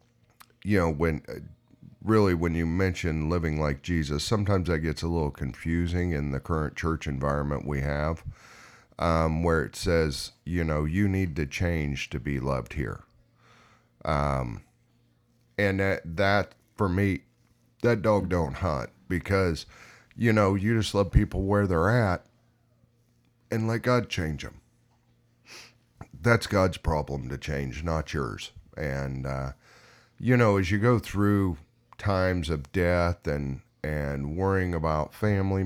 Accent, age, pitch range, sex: American, 40-59, 75-100 Hz, male